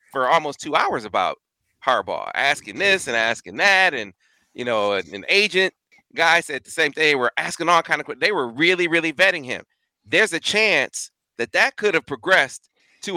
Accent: American